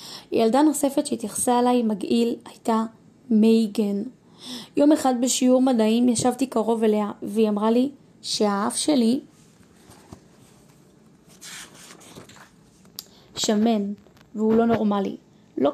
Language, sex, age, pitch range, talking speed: Hebrew, female, 20-39, 210-245 Hz, 90 wpm